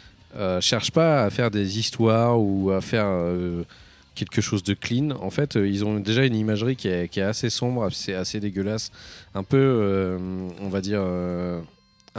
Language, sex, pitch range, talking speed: French, male, 95-125 Hz, 195 wpm